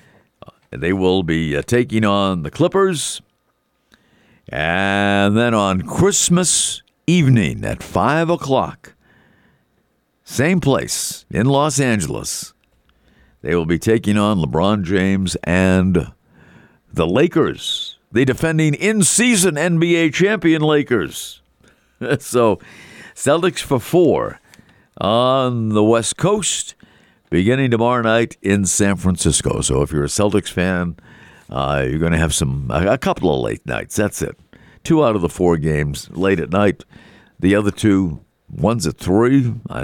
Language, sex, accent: English, male, American